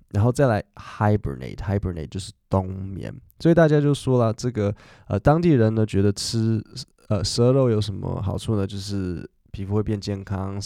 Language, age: Chinese, 20-39